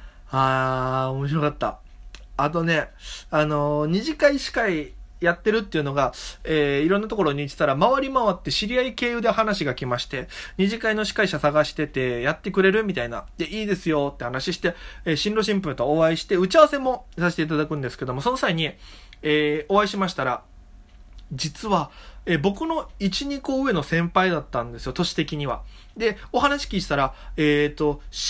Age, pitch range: 20-39, 150-225 Hz